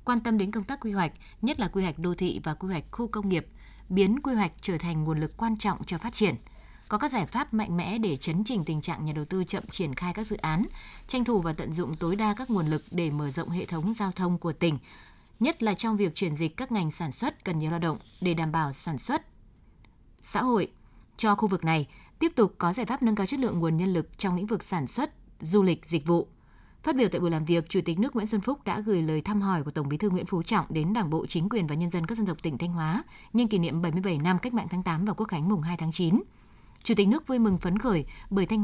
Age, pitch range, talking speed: 20-39, 170-215 Hz, 280 wpm